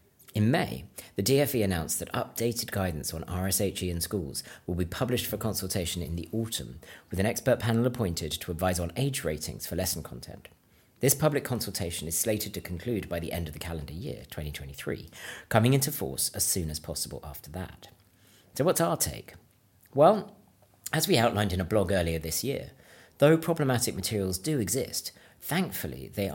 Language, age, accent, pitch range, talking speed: English, 40-59, British, 85-120 Hz, 180 wpm